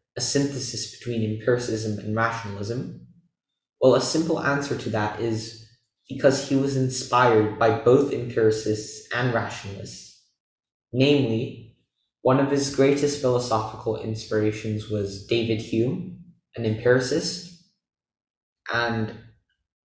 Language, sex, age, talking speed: English, male, 10-29, 105 wpm